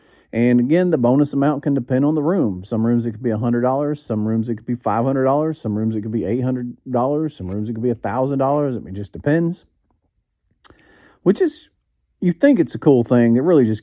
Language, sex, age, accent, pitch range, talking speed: English, male, 40-59, American, 100-130 Hz, 215 wpm